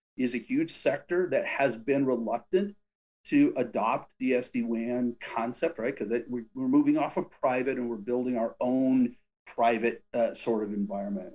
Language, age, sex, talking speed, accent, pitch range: English, 40-59, male, 160 wpm, American, 115-145 Hz